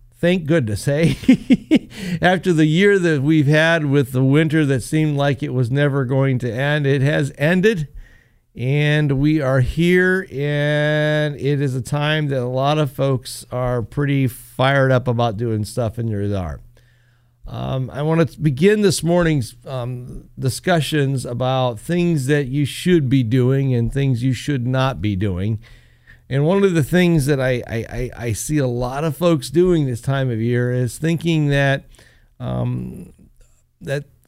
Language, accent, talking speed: English, American, 165 wpm